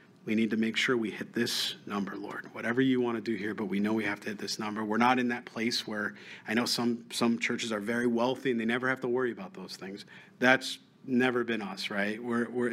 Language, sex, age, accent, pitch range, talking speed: English, male, 40-59, American, 115-150 Hz, 260 wpm